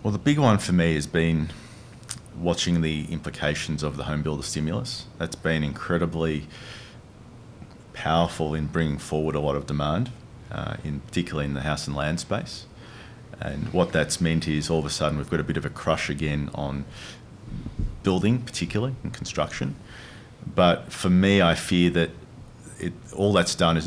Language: English